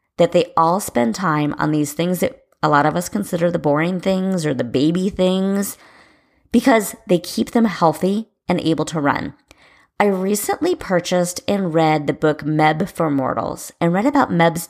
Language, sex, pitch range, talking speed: English, female, 155-200 Hz, 180 wpm